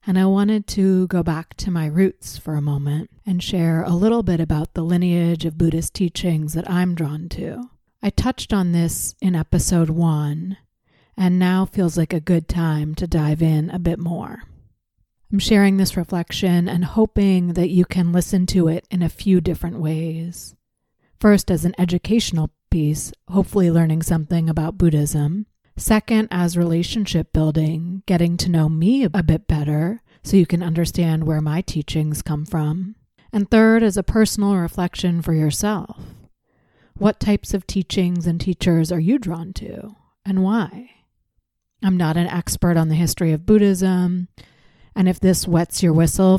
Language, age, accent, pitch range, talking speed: English, 30-49, American, 160-190 Hz, 165 wpm